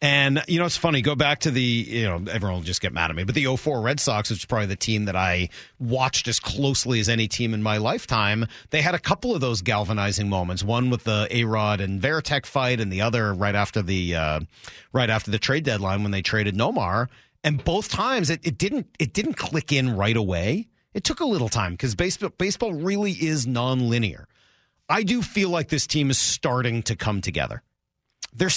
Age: 40-59